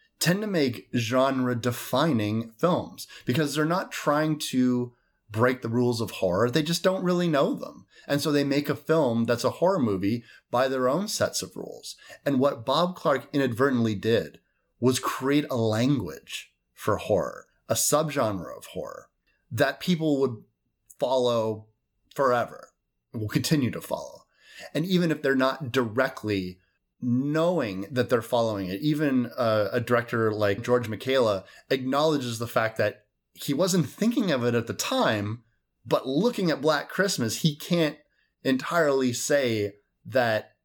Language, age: English, 30-49